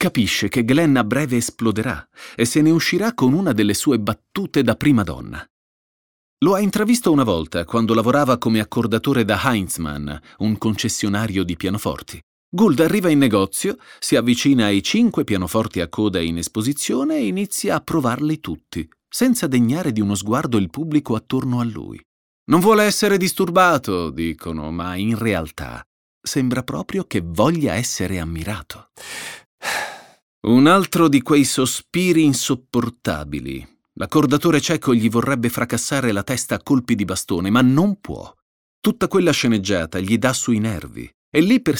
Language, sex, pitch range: Italian, male, 100-150 Hz